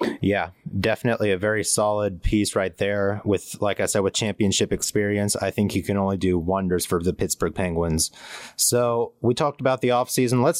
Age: 30-49